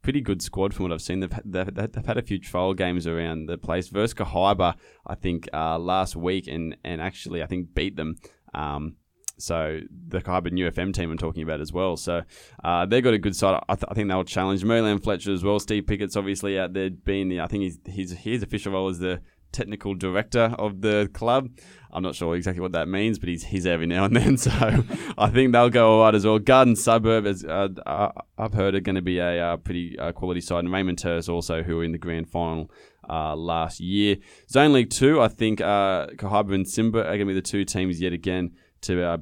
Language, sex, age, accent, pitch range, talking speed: English, male, 20-39, Australian, 85-105 Hz, 235 wpm